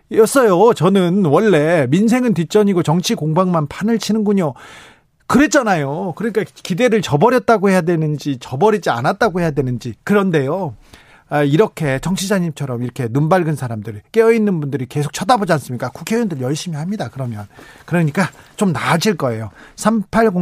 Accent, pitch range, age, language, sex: native, 140-195 Hz, 40-59, Korean, male